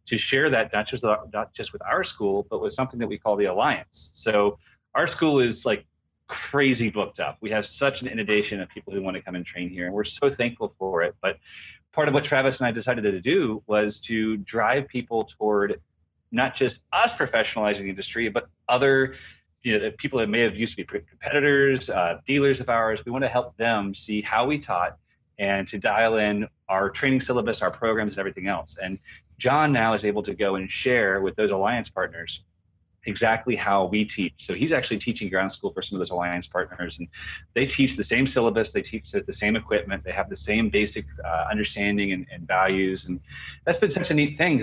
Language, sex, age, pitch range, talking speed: English, male, 30-49, 95-130 Hz, 210 wpm